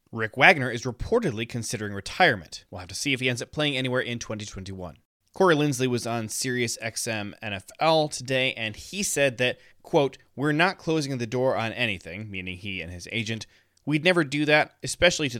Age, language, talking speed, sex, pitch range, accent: 20-39, English, 185 wpm, male, 105-140 Hz, American